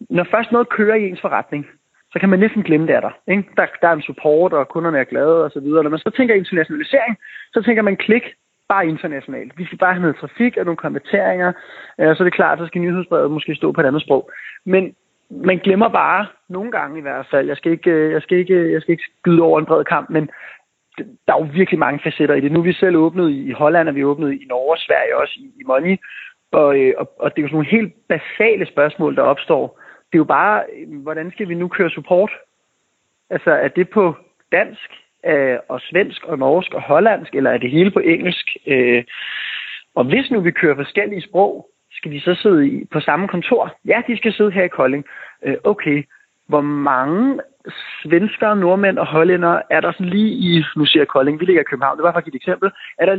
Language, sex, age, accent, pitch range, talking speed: Danish, male, 30-49, native, 155-205 Hz, 220 wpm